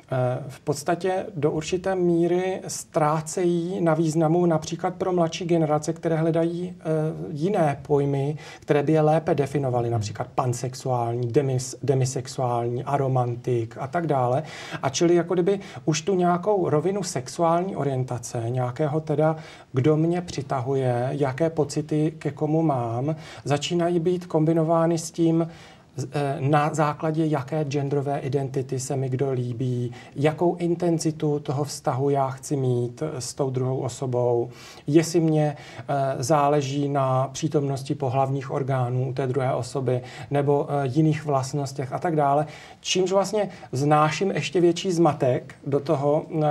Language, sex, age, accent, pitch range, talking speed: Czech, male, 40-59, native, 135-165 Hz, 125 wpm